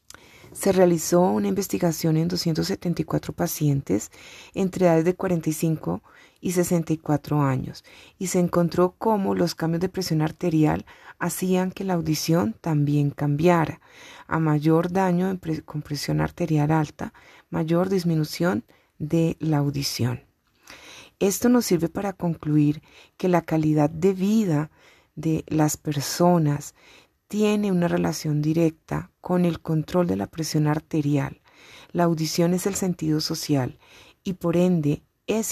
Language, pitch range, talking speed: Spanish, 155-180 Hz, 130 wpm